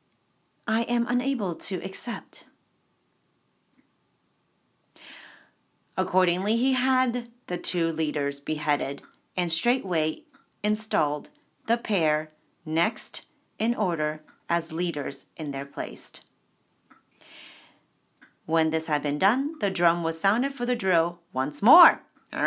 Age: 40-59